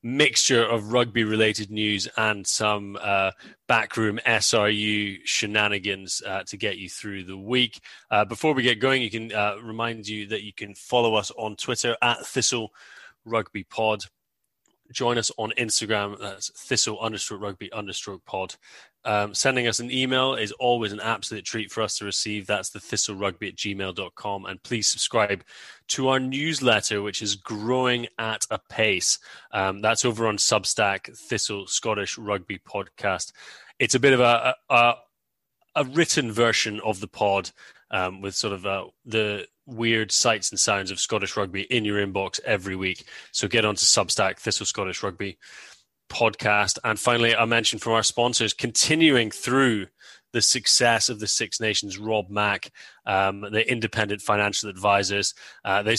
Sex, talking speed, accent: male, 165 wpm, British